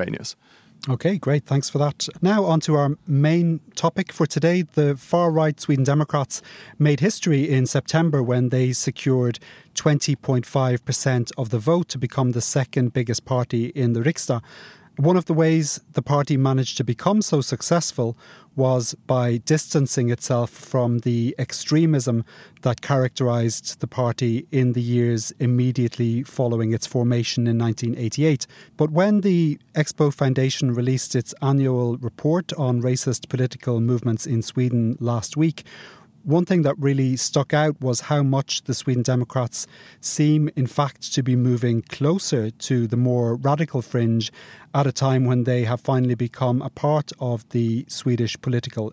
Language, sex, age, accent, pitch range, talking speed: English, male, 30-49, British, 120-150 Hz, 150 wpm